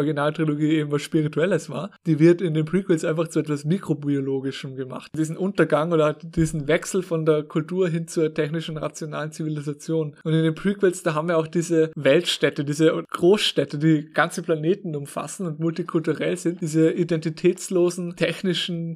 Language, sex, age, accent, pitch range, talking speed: German, male, 20-39, German, 150-170 Hz, 160 wpm